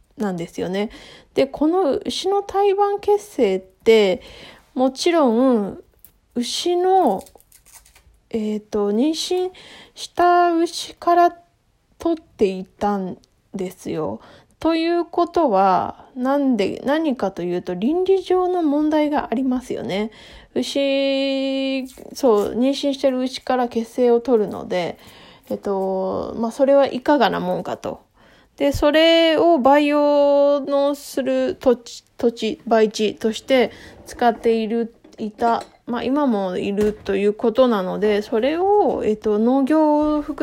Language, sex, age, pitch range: Japanese, female, 20-39, 215-290 Hz